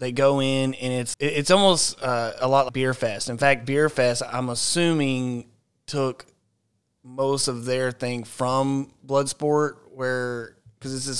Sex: male